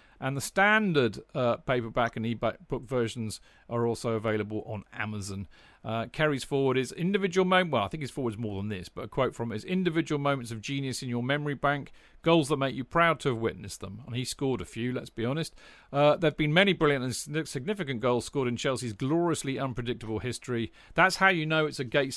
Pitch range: 110-145 Hz